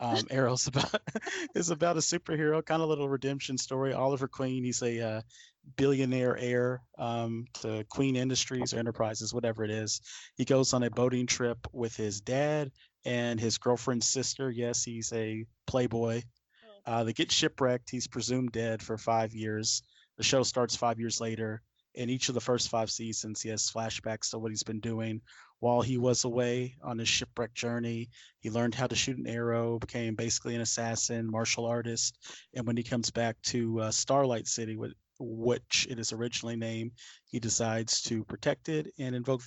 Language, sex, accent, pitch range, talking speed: English, male, American, 115-130 Hz, 180 wpm